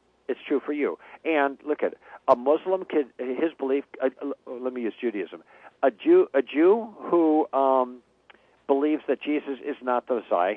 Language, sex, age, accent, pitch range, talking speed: English, male, 60-79, American, 120-185 Hz, 175 wpm